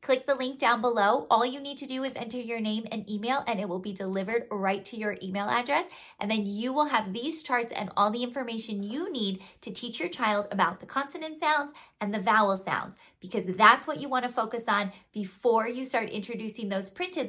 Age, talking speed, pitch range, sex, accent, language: 20-39, 220 wpm, 210-265 Hz, female, American, English